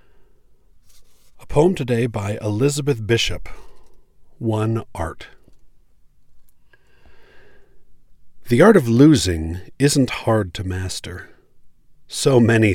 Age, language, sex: 40-59, English, male